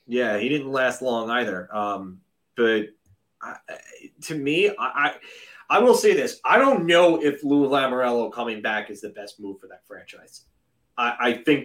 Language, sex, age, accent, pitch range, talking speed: English, male, 30-49, American, 115-140 Hz, 175 wpm